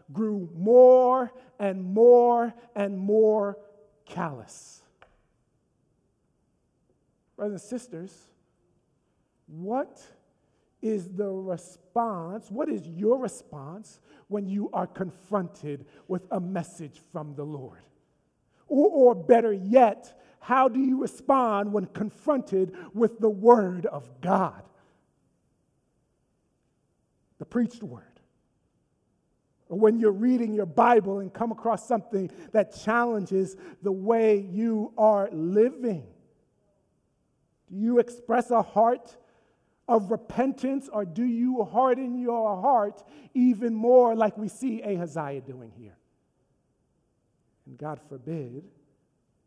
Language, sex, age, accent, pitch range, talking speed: English, male, 50-69, American, 170-235 Hz, 105 wpm